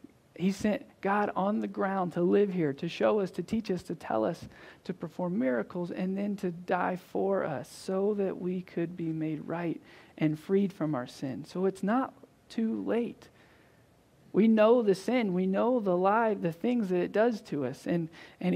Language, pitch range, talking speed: English, 165-205 Hz, 195 wpm